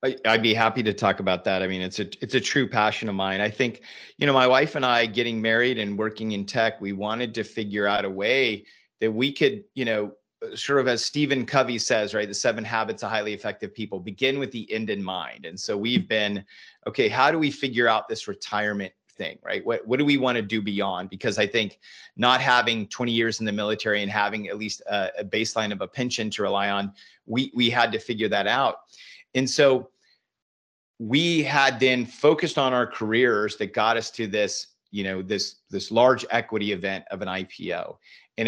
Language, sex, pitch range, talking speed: English, male, 100-125 Hz, 220 wpm